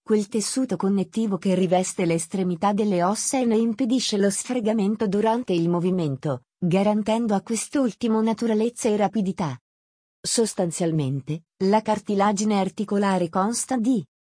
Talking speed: 120 wpm